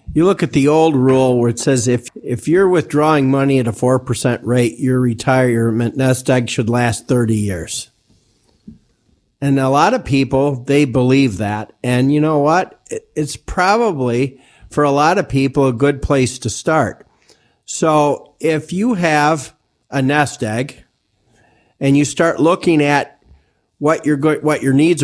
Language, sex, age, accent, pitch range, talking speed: English, male, 50-69, American, 120-145 Hz, 165 wpm